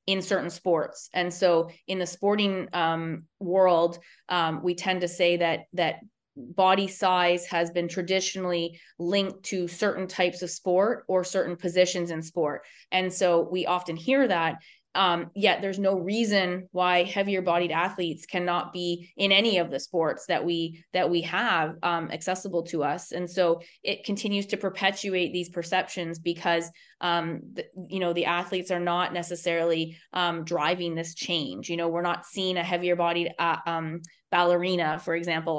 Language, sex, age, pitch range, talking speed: English, female, 20-39, 170-185 Hz, 165 wpm